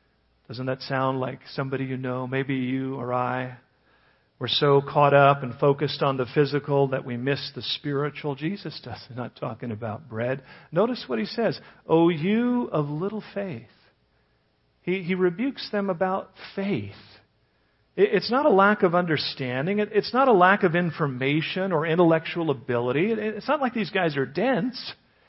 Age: 50-69